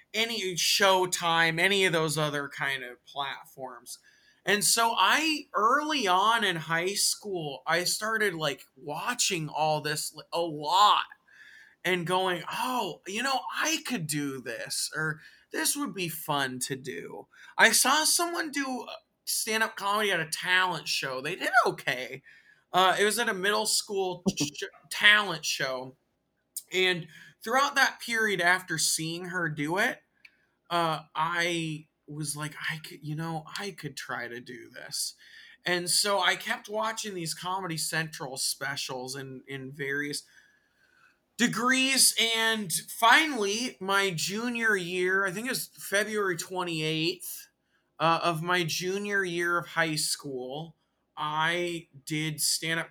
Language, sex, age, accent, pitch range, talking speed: English, male, 20-39, American, 155-210 Hz, 140 wpm